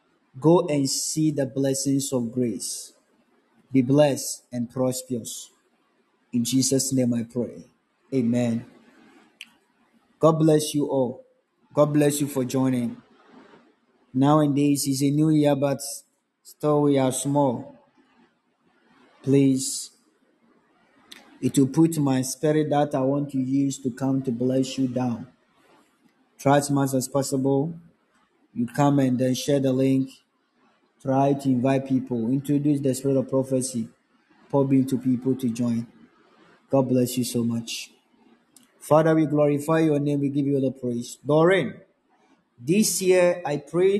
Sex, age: male, 20-39